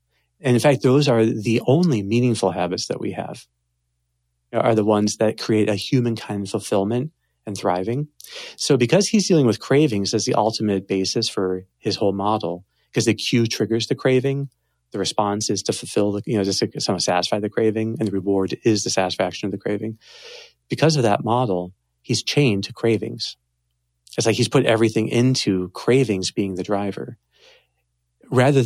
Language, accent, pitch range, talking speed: English, American, 95-120 Hz, 175 wpm